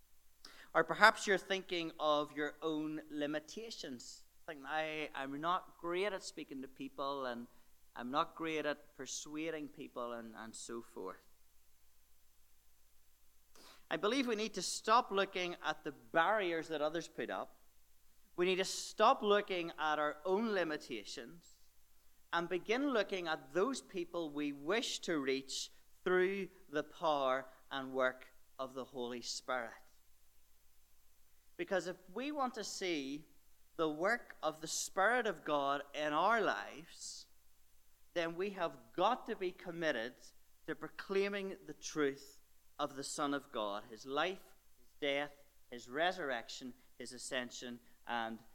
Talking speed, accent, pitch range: 135 wpm, Irish, 115-170 Hz